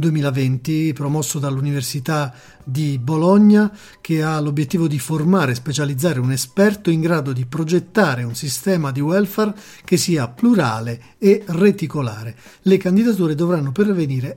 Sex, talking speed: male, 130 wpm